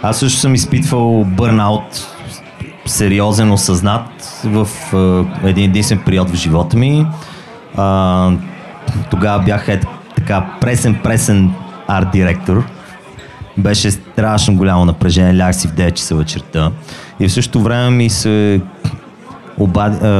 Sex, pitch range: male, 95-120 Hz